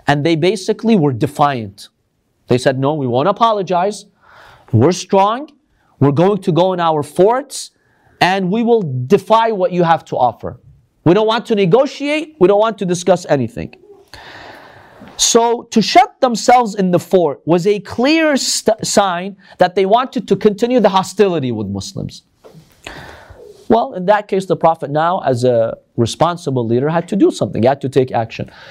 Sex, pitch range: male, 145-215 Hz